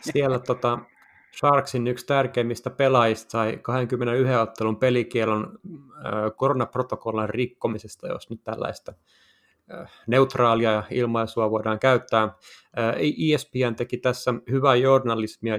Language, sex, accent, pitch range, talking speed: Finnish, male, native, 110-130 Hz, 105 wpm